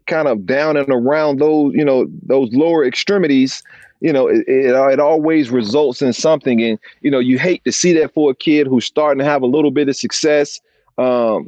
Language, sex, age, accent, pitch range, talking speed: English, male, 40-59, American, 120-145 Hz, 215 wpm